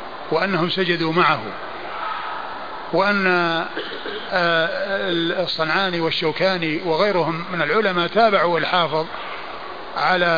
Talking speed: 70 wpm